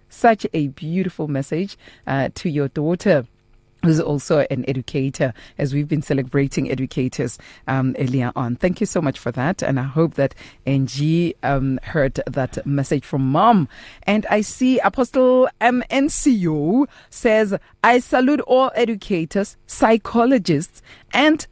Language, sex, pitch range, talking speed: English, female, 140-200 Hz, 135 wpm